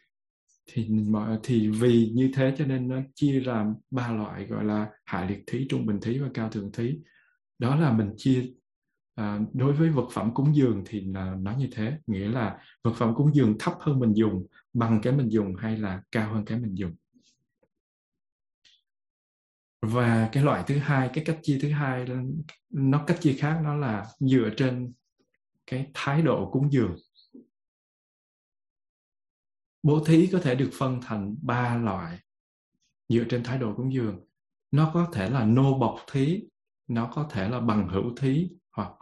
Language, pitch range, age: Vietnamese, 110-140 Hz, 20-39